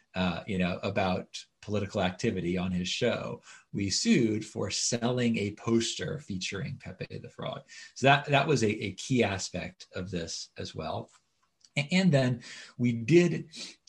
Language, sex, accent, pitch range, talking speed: English, male, American, 105-135 Hz, 150 wpm